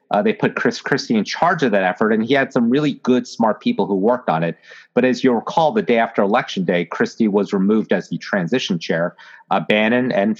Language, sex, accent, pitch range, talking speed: English, male, American, 110-155 Hz, 235 wpm